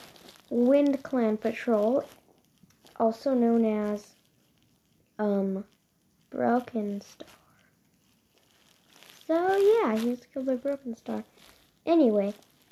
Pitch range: 220-260 Hz